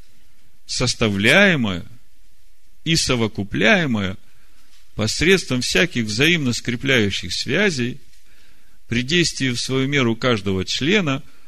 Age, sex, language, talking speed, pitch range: 50-69, male, Russian, 80 wpm, 95-125 Hz